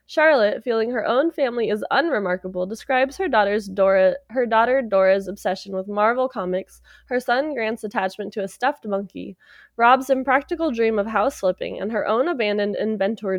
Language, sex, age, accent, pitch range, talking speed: English, female, 20-39, American, 200-275 Hz, 165 wpm